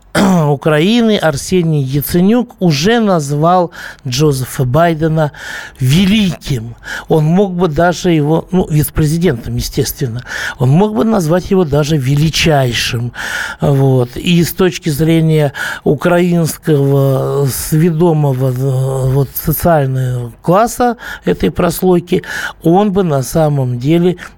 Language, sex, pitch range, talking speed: Russian, male, 135-180 Hz, 95 wpm